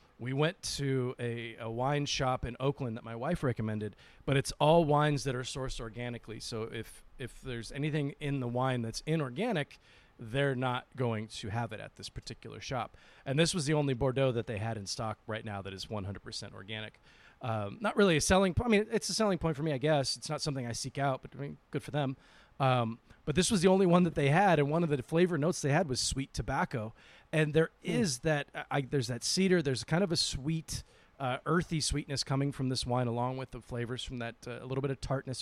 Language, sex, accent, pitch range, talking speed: English, male, American, 115-145 Hz, 230 wpm